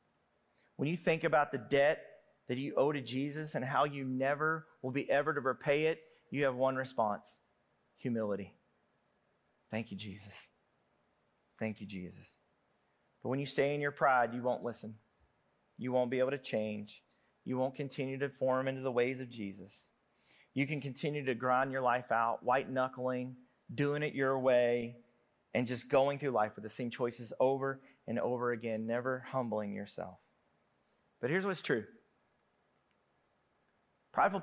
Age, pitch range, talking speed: 40-59, 120-160 Hz, 160 wpm